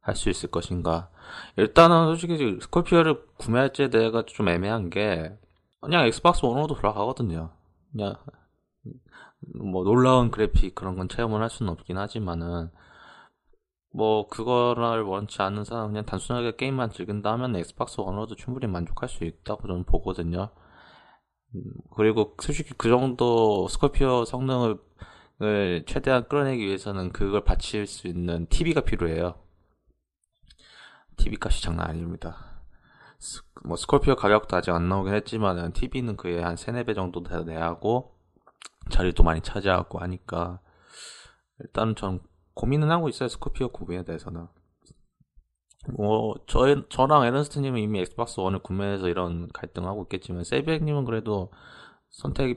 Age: 20-39